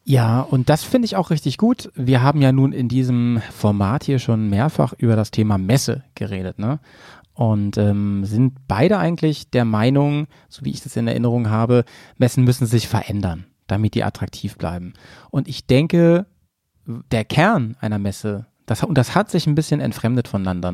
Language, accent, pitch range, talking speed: German, German, 110-140 Hz, 180 wpm